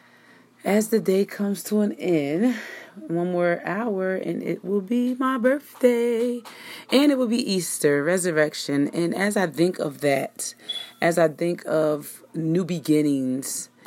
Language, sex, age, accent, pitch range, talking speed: English, female, 30-49, American, 145-175 Hz, 145 wpm